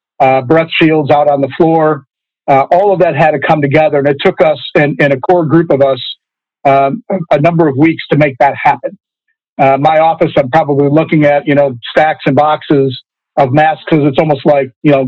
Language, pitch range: English, 140-160 Hz